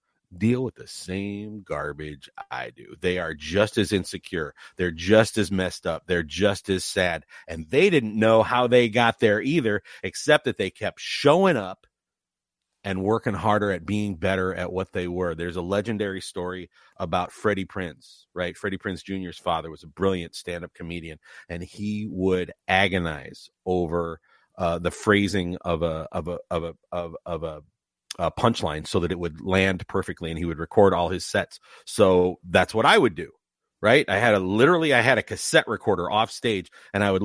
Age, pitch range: 40-59, 85-105 Hz